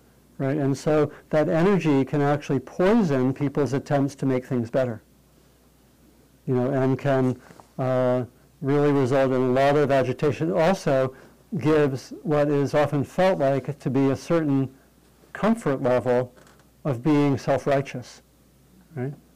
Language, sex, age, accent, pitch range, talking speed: English, male, 60-79, American, 125-150 Hz, 135 wpm